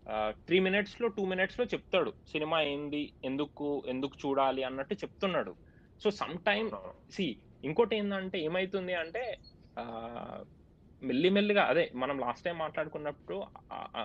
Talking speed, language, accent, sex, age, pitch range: 130 wpm, Telugu, native, male, 20-39, 140-195 Hz